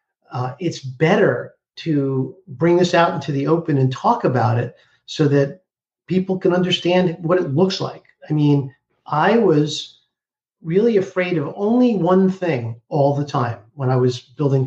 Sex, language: male, English